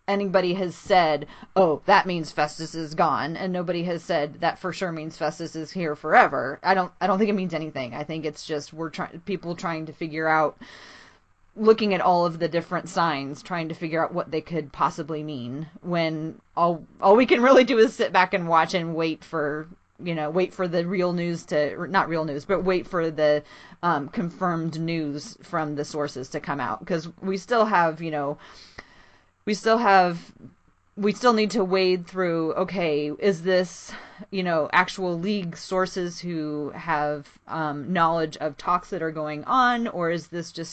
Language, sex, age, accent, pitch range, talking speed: English, female, 30-49, American, 155-190 Hz, 195 wpm